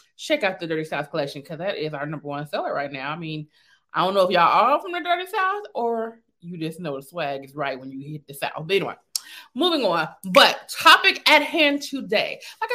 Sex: female